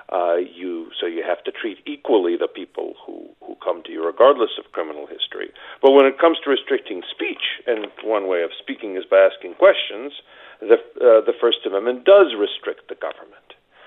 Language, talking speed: English, 190 wpm